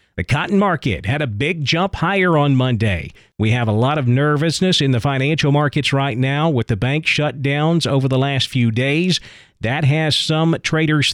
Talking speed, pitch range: 190 wpm, 125-155 Hz